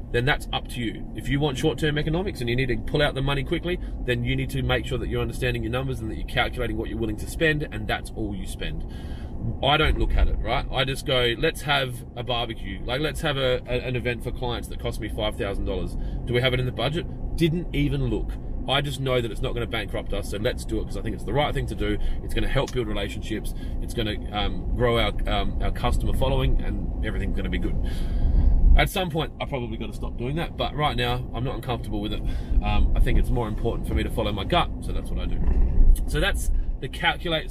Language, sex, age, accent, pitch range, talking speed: English, male, 30-49, Australian, 100-135 Hz, 255 wpm